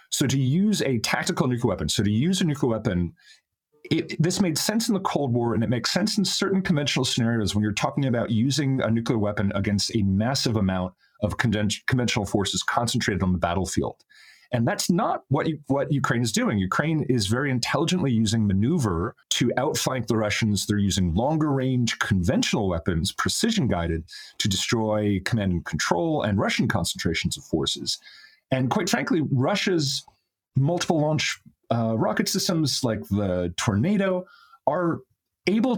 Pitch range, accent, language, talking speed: 105-165 Hz, American, English, 165 wpm